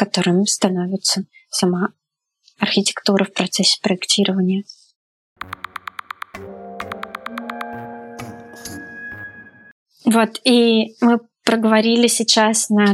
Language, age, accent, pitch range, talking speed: Russian, 20-39, native, 195-230 Hz, 60 wpm